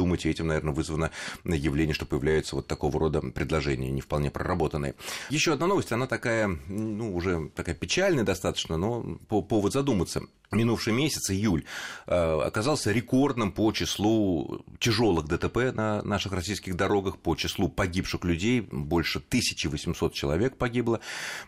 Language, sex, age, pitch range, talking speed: Russian, male, 30-49, 75-115 Hz, 135 wpm